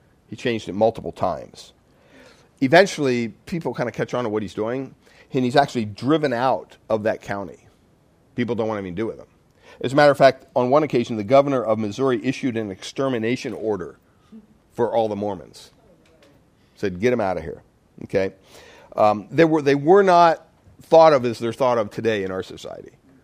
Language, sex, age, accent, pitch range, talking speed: English, male, 50-69, American, 115-160 Hz, 190 wpm